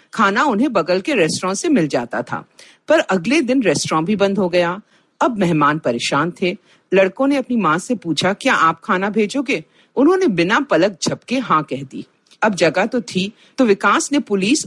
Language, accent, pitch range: Hindi, native, 165-255 Hz